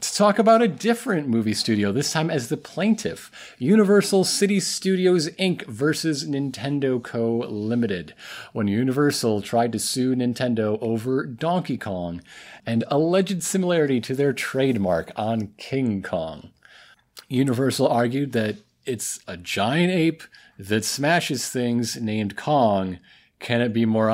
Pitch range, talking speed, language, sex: 110-150 Hz, 135 wpm, English, male